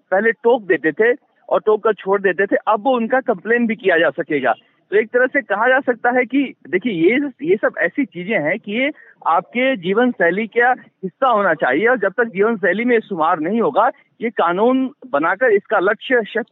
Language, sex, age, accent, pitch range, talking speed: Hindi, male, 50-69, native, 190-255 Hz, 205 wpm